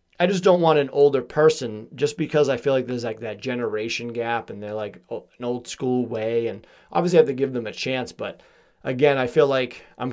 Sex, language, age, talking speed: male, English, 30-49, 230 wpm